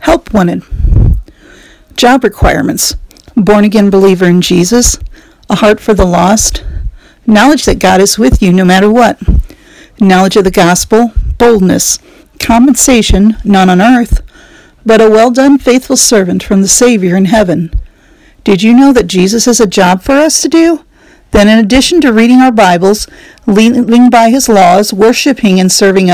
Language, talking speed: English, 160 wpm